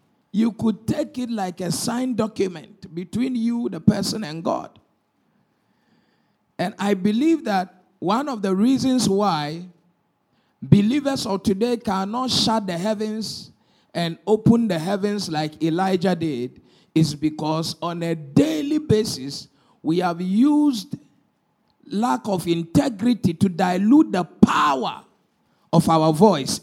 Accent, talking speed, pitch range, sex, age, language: Nigerian, 125 wpm, 185-250 Hz, male, 50-69, English